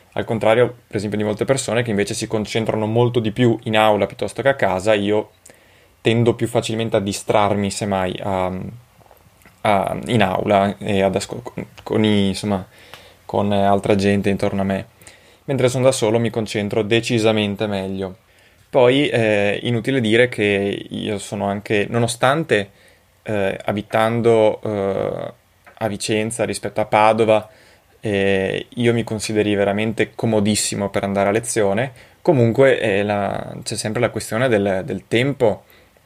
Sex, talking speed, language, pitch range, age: male, 135 wpm, Italian, 100-115 Hz, 20-39